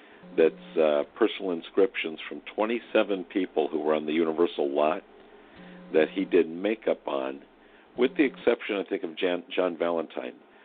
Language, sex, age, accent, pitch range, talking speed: English, male, 50-69, American, 70-90 Hz, 150 wpm